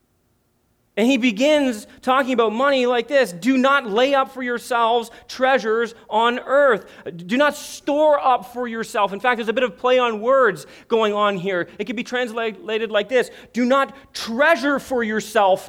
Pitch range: 180-245 Hz